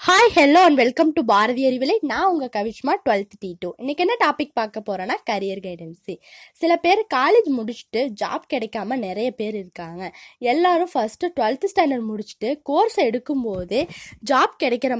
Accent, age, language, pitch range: native, 20-39, Tamil, 205-315 Hz